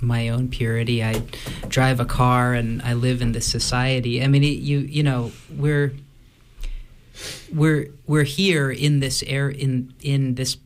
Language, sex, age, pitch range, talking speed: English, male, 30-49, 120-140 Hz, 160 wpm